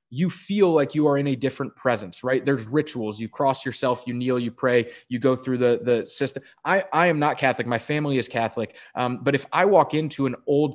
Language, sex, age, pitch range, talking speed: English, male, 20-39, 125-160 Hz, 235 wpm